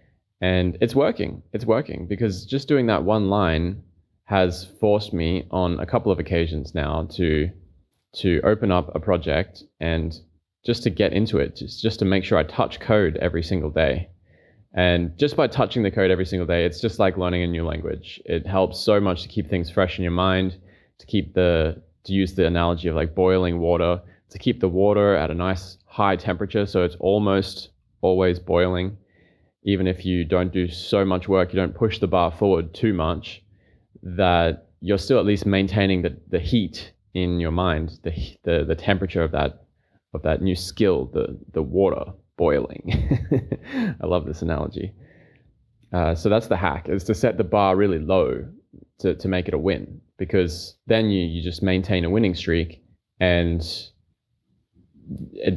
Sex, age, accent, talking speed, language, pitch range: male, 20-39, Australian, 185 wpm, English, 85-100 Hz